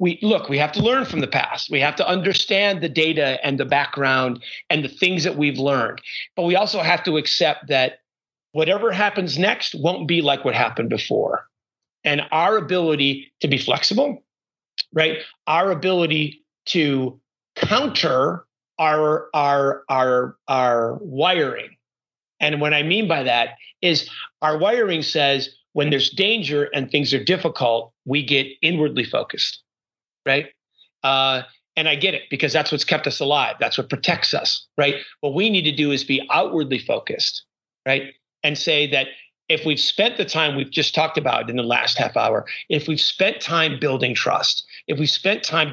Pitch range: 140-175 Hz